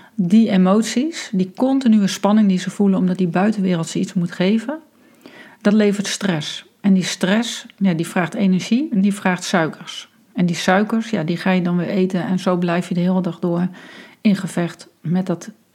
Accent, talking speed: Dutch, 190 wpm